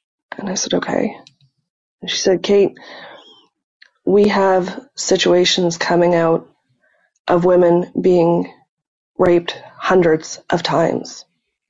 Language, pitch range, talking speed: English, 165-180 Hz, 95 wpm